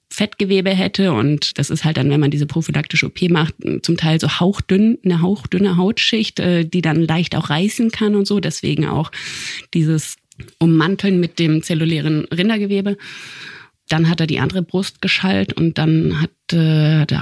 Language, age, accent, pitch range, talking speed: German, 30-49, German, 150-185 Hz, 165 wpm